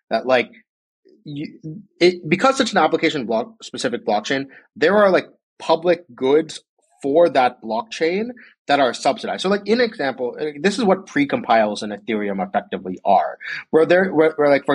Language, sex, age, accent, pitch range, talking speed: English, male, 30-49, American, 110-175 Hz, 160 wpm